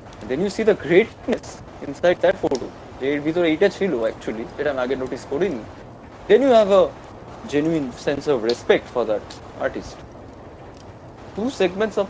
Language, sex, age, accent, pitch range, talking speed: English, male, 20-39, Indian, 115-155 Hz, 130 wpm